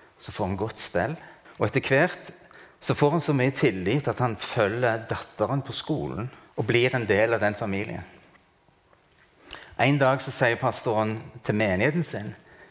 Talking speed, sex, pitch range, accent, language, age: 160 wpm, male, 105-135 Hz, Norwegian, English, 30-49